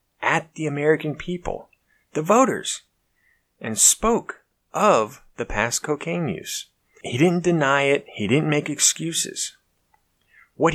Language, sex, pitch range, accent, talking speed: English, male, 120-190 Hz, American, 125 wpm